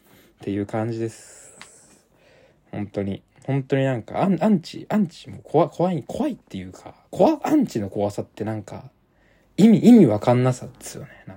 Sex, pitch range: male, 105-175 Hz